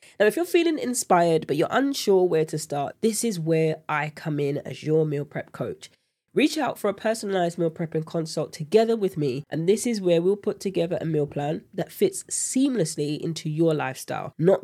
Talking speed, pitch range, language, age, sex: 205 wpm, 155-210 Hz, English, 20-39, female